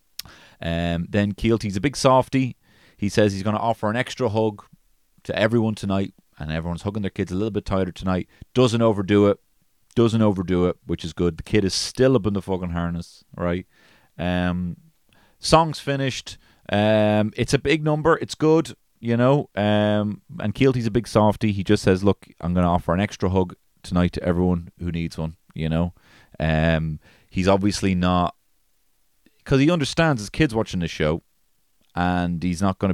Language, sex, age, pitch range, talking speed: English, male, 30-49, 90-110 Hz, 180 wpm